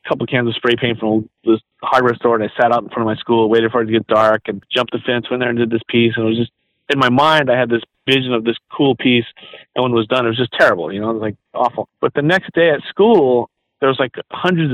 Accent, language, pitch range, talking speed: American, English, 115-145 Hz, 310 wpm